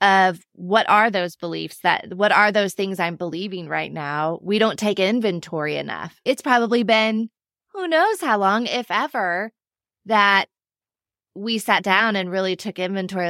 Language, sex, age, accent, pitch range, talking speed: English, female, 20-39, American, 170-210 Hz, 160 wpm